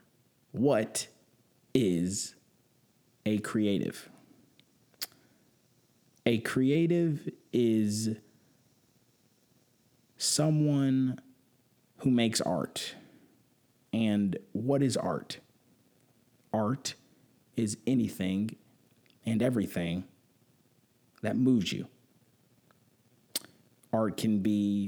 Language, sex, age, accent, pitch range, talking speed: English, male, 30-49, American, 95-120 Hz, 65 wpm